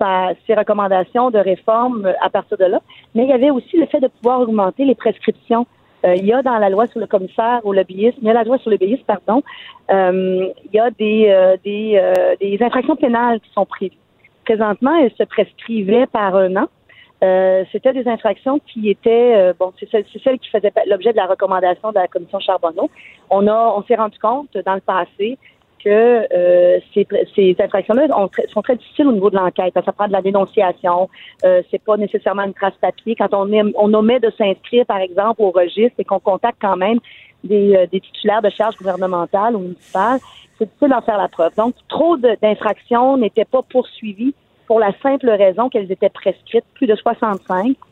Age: 40-59